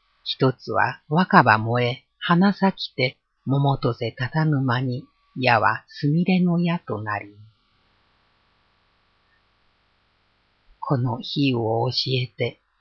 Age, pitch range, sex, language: 50-69, 105-145 Hz, female, Japanese